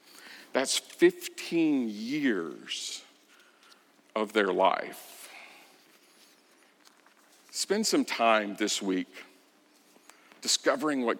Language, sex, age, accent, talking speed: English, male, 50-69, American, 70 wpm